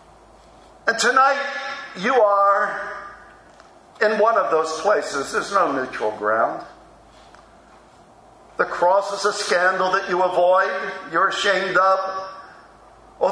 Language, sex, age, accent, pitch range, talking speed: English, male, 50-69, American, 170-205 Hz, 115 wpm